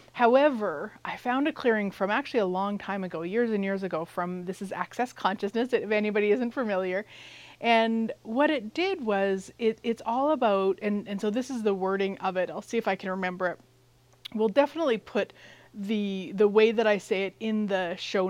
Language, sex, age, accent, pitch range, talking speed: English, female, 30-49, American, 185-225 Hz, 205 wpm